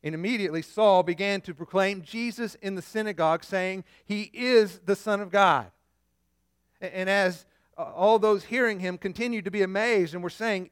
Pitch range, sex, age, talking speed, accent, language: 160-220 Hz, male, 50-69, 170 wpm, American, English